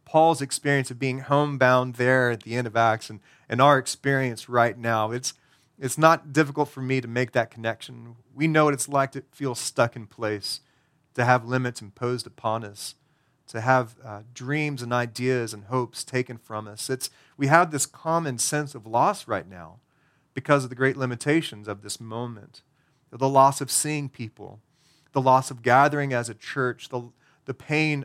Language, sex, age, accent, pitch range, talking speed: English, male, 30-49, American, 120-145 Hz, 185 wpm